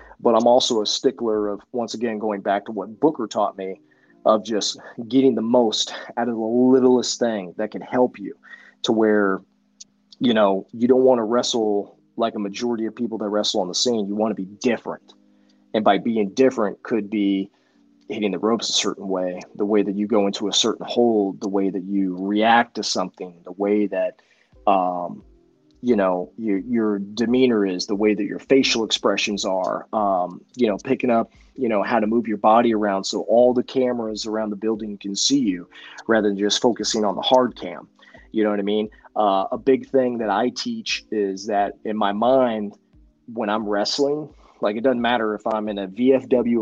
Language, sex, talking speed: English, male, 205 wpm